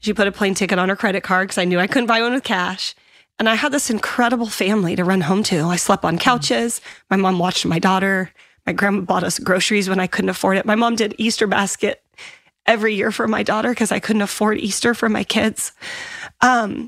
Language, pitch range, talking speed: English, 185-220 Hz, 235 wpm